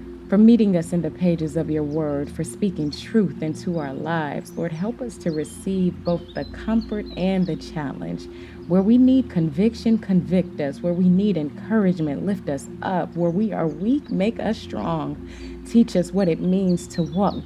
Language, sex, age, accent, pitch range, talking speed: English, female, 30-49, American, 160-200 Hz, 180 wpm